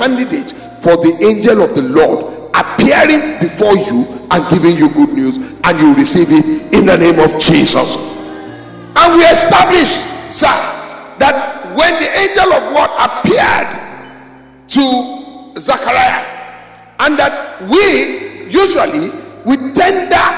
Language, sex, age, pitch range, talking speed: English, male, 50-69, 235-325 Hz, 125 wpm